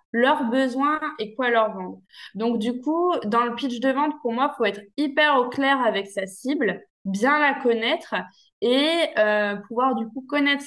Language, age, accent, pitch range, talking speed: French, 20-39, French, 215-265 Hz, 190 wpm